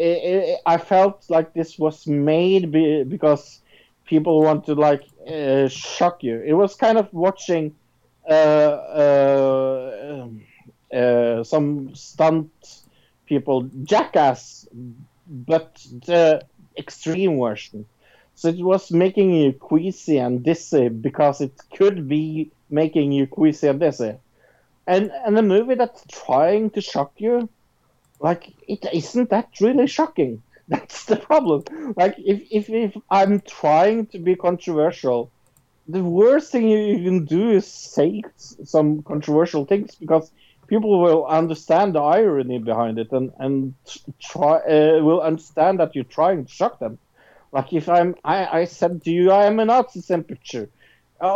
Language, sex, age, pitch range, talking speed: English, male, 50-69, 145-195 Hz, 140 wpm